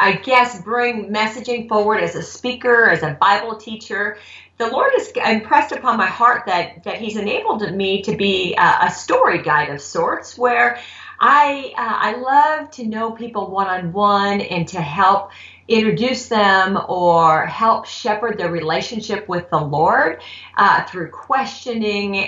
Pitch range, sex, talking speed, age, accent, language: 175-235 Hz, female, 155 wpm, 40-59, American, English